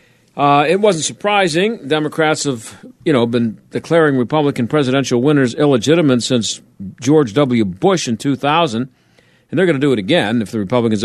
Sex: male